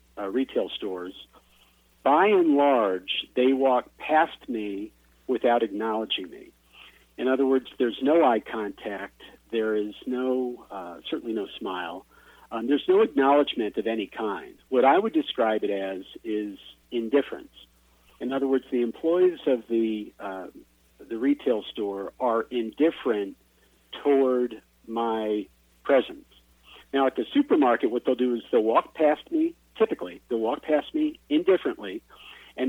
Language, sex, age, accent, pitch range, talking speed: English, male, 50-69, American, 105-145 Hz, 140 wpm